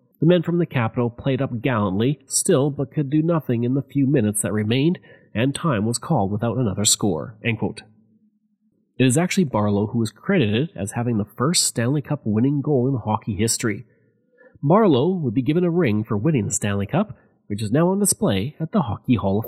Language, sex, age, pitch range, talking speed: English, male, 30-49, 110-170 Hz, 200 wpm